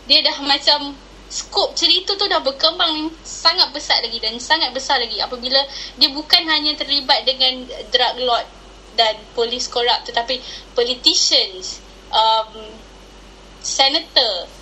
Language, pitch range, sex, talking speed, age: English, 250-300 Hz, female, 125 wpm, 10-29